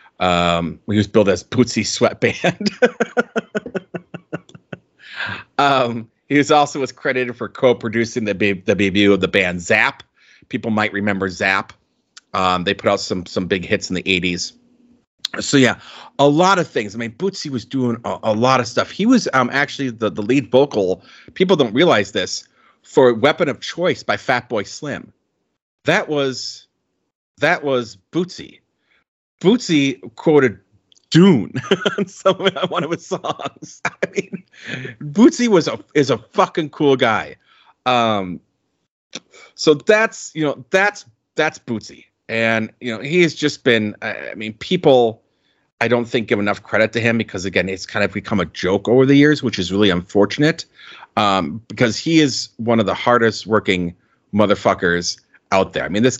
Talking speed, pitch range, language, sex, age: 165 wpm, 105-155 Hz, English, male, 30-49